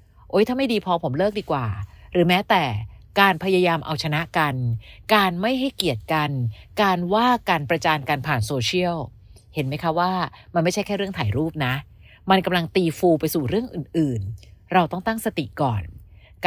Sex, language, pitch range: female, Thai, 145-195 Hz